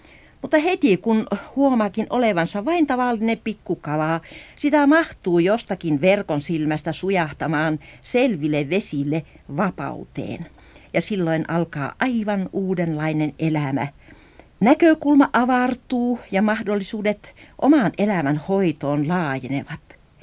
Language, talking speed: Finnish, 90 wpm